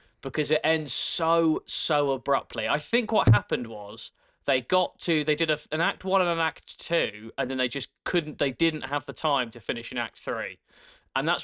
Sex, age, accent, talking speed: male, 20-39, British, 210 wpm